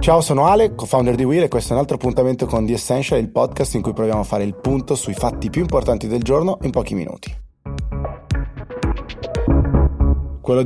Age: 30-49